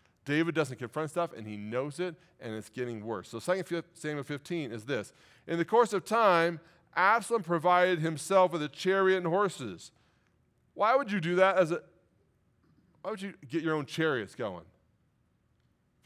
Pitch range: 120-175 Hz